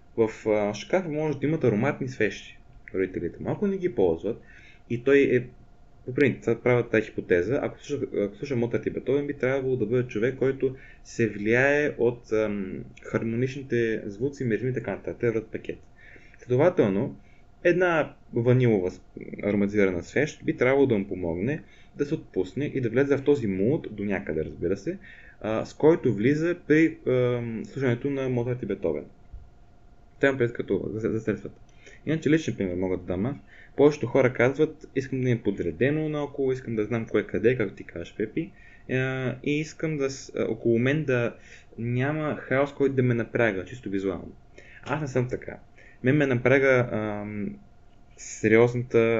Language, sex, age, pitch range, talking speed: Bulgarian, male, 20-39, 105-135 Hz, 150 wpm